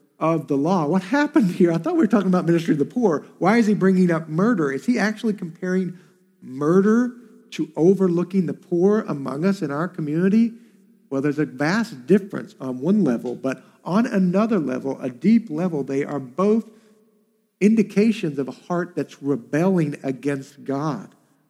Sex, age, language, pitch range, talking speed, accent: male, 50-69, English, 140-210 Hz, 175 wpm, American